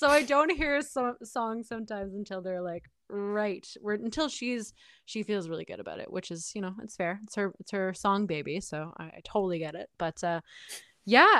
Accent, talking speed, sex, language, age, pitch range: American, 210 wpm, female, English, 20-39, 175-225 Hz